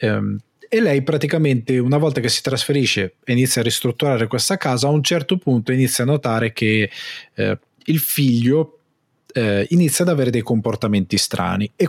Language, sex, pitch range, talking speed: Italian, male, 110-140 Hz, 165 wpm